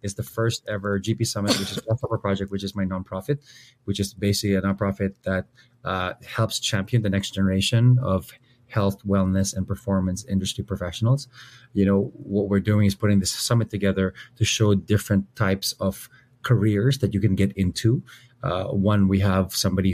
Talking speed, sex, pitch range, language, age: 185 wpm, male, 95-115 Hz, Filipino, 30-49